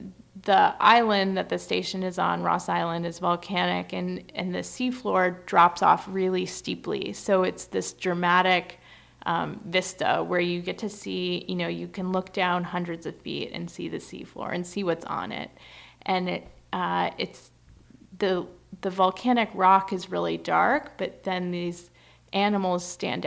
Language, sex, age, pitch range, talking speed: English, female, 20-39, 125-195 Hz, 165 wpm